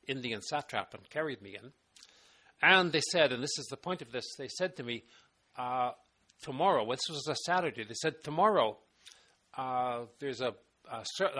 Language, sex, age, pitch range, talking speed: English, male, 60-79, 125-170 Hz, 170 wpm